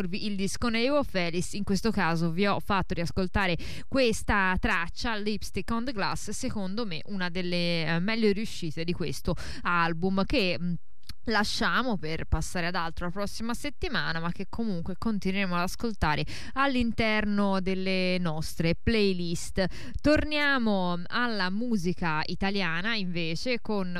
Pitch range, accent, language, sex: 175-220 Hz, native, Italian, female